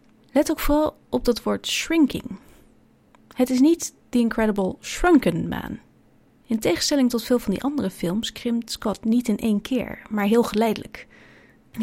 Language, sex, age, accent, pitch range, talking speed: Dutch, female, 30-49, Dutch, 195-240 Hz, 160 wpm